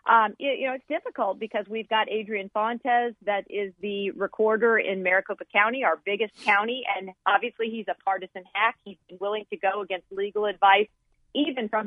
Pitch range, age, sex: 200-230 Hz, 40-59, female